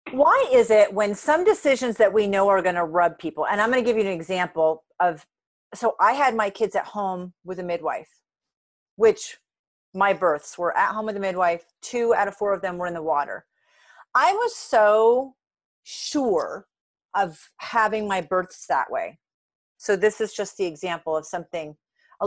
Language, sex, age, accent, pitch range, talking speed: English, female, 40-59, American, 195-270 Hz, 190 wpm